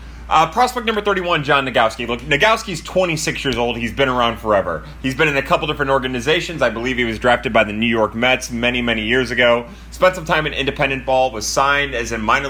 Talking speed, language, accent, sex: 225 wpm, English, American, male